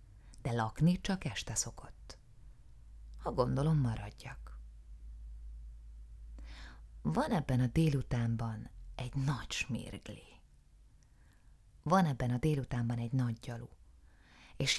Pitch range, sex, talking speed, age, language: 100-140 Hz, female, 95 wpm, 30-49, Hungarian